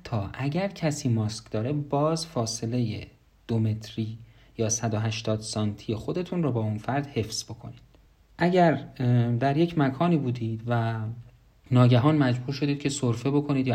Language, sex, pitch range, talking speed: Persian, male, 110-135 Hz, 130 wpm